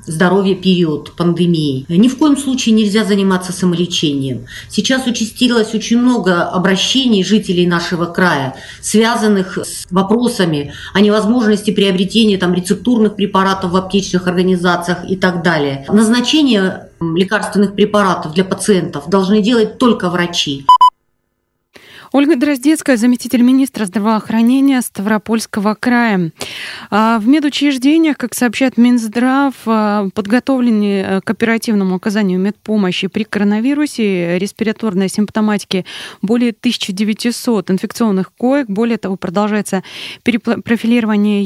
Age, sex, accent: 30-49, female, native